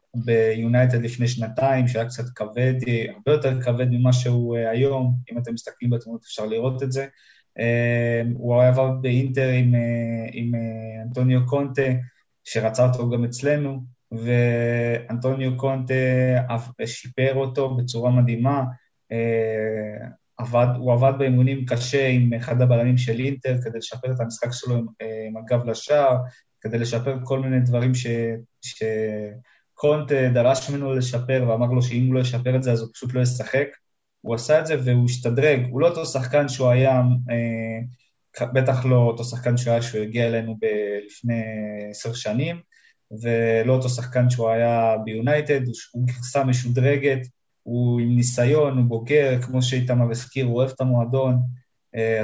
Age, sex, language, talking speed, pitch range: 20-39, male, Hebrew, 150 wpm, 115-130 Hz